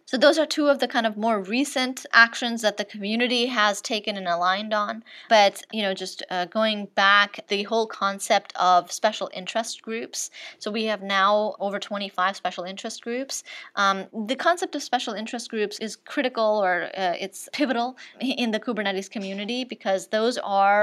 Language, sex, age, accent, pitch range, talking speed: English, female, 20-39, American, 185-220 Hz, 180 wpm